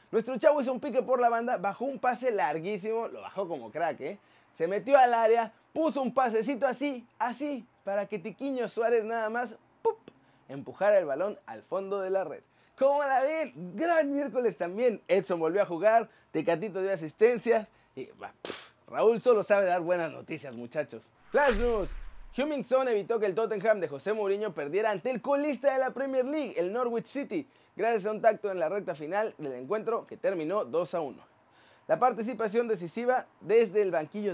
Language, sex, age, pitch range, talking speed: Spanish, male, 30-49, 200-255 Hz, 185 wpm